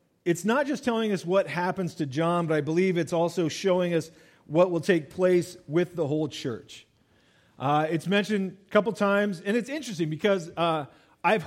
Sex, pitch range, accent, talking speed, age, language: male, 155-200 Hz, American, 190 wpm, 40-59, English